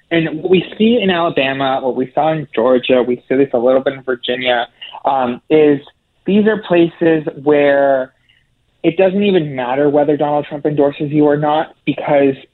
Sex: male